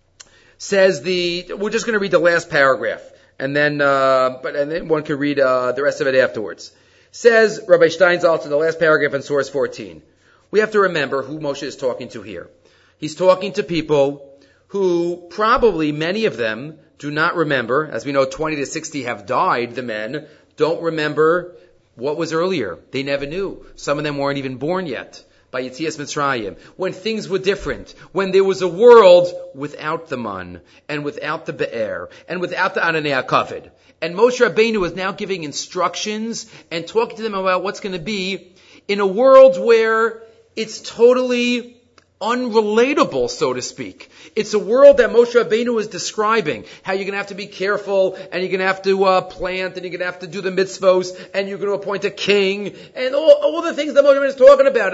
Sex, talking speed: male, 195 wpm